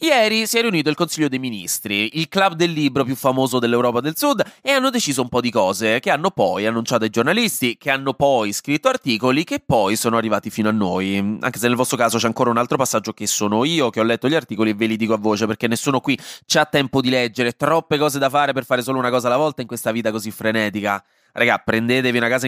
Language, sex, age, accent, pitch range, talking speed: Italian, male, 20-39, native, 110-155 Hz, 250 wpm